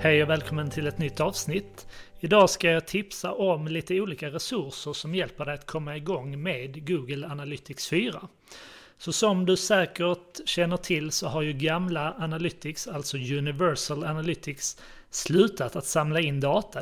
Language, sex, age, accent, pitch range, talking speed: Swedish, male, 30-49, native, 140-170 Hz, 155 wpm